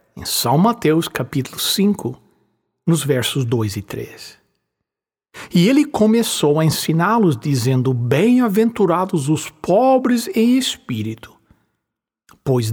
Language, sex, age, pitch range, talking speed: English, male, 60-79, 130-215 Hz, 105 wpm